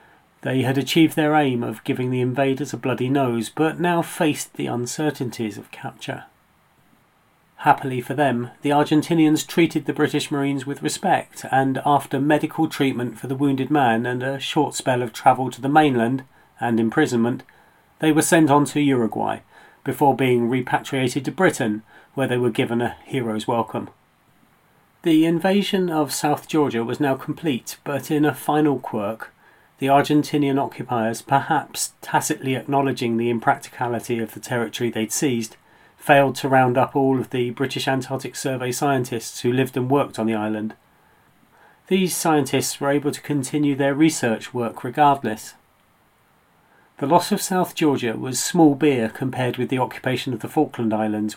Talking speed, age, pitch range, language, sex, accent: 160 wpm, 40-59, 120-150 Hz, English, male, British